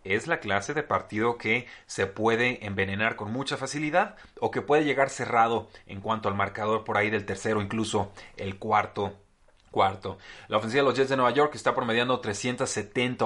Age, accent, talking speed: 30-49, Mexican, 180 wpm